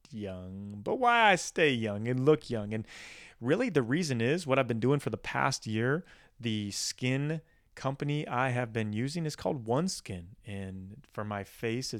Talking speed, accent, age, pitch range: 180 wpm, American, 30-49, 110-140 Hz